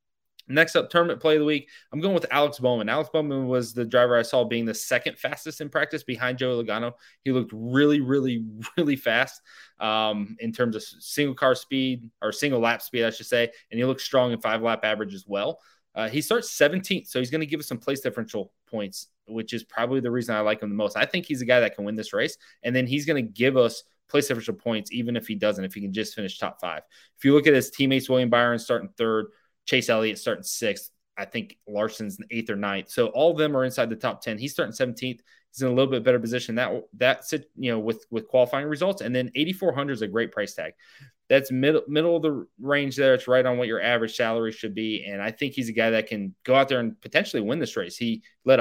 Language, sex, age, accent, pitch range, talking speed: English, male, 20-39, American, 110-140 Hz, 255 wpm